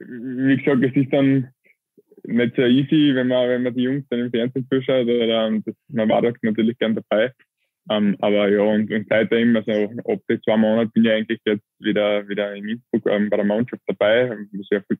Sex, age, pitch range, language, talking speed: male, 20-39, 105-125 Hz, German, 200 wpm